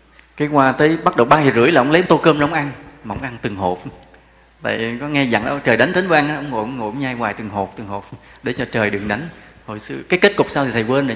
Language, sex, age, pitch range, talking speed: English, male, 20-39, 110-160 Hz, 295 wpm